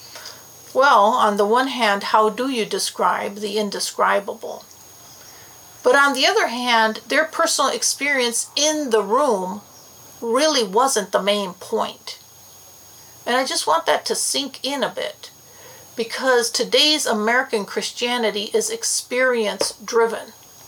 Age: 50-69